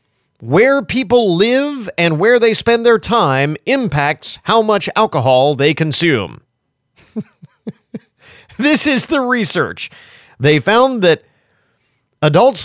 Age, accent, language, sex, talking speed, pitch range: 40-59, American, English, male, 110 wpm, 130-210 Hz